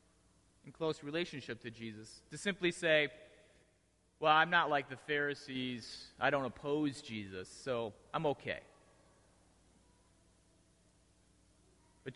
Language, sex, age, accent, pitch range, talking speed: English, male, 30-49, American, 100-160 Hz, 110 wpm